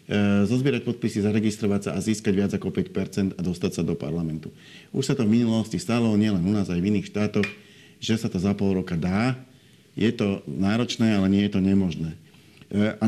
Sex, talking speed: male, 195 wpm